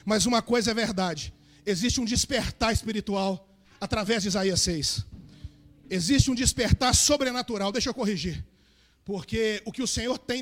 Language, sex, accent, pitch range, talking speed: Portuguese, male, Brazilian, 195-255 Hz, 150 wpm